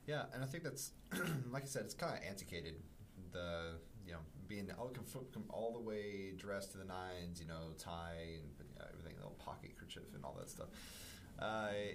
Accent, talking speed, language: American, 195 wpm, English